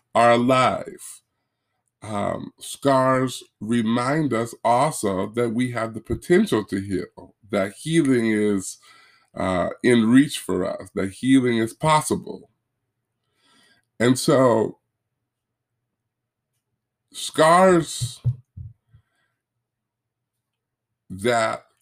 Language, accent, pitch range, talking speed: English, American, 110-125 Hz, 85 wpm